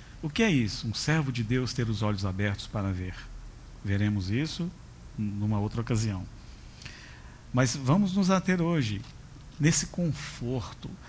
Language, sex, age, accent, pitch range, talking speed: Portuguese, male, 50-69, Brazilian, 110-140 Hz, 140 wpm